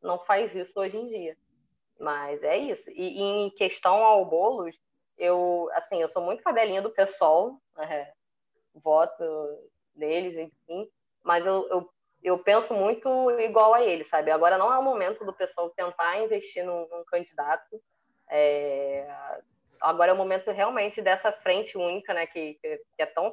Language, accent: Portuguese, Brazilian